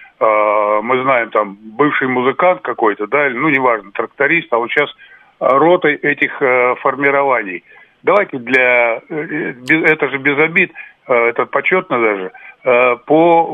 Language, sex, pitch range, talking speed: Russian, male, 130-165 Hz, 115 wpm